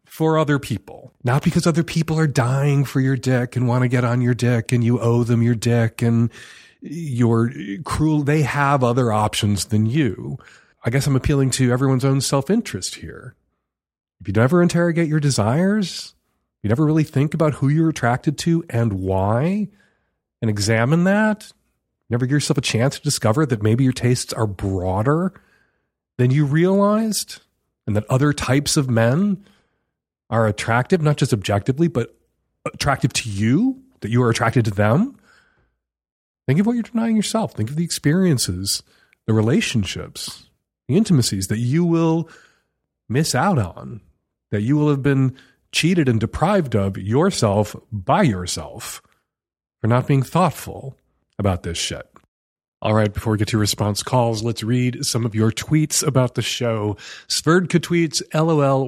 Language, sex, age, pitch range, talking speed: English, male, 40-59, 115-155 Hz, 165 wpm